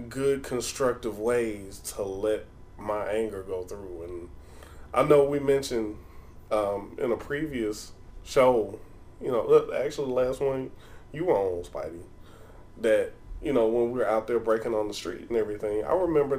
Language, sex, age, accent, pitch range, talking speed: English, male, 20-39, American, 100-130 Hz, 165 wpm